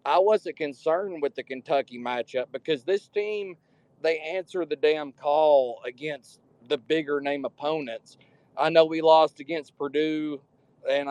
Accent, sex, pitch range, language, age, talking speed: American, male, 135-160 Hz, English, 40-59, 145 wpm